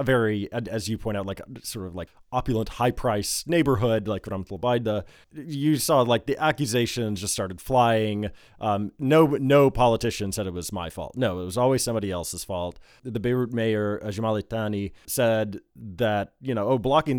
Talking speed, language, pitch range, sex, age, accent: 180 wpm, English, 100-125 Hz, male, 30-49, American